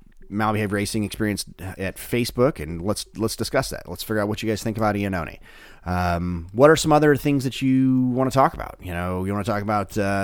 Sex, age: male, 30-49